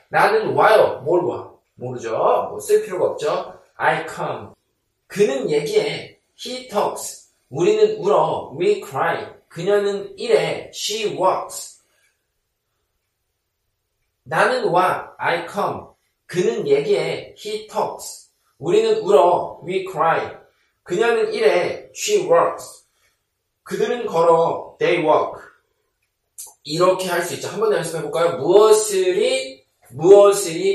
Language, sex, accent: Korean, male, native